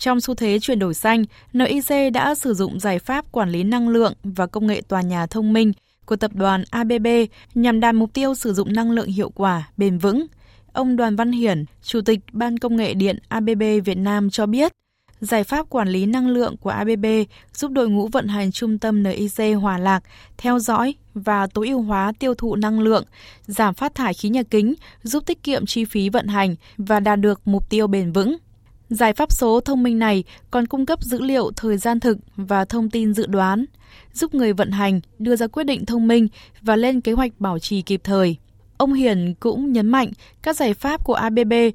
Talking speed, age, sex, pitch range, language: 215 wpm, 20-39, female, 200-245 Hz, Vietnamese